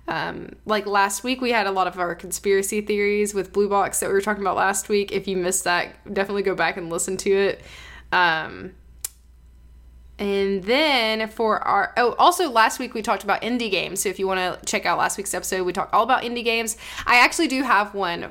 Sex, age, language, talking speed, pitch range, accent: female, 10-29, English, 225 wpm, 185-240 Hz, American